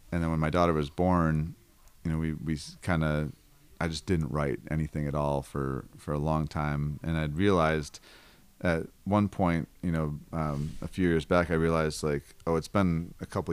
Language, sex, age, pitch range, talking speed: English, male, 30-49, 75-85 Hz, 205 wpm